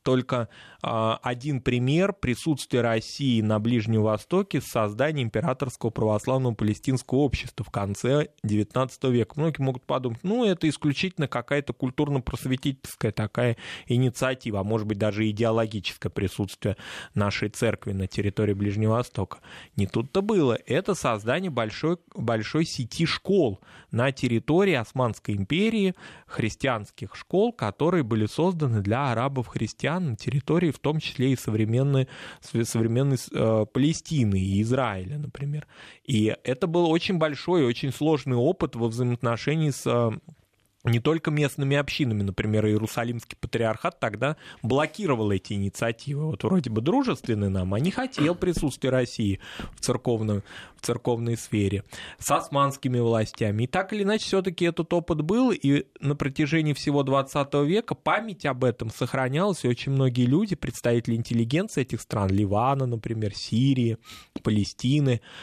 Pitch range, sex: 110-150 Hz, male